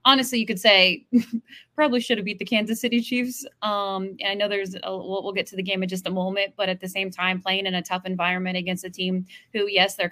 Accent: American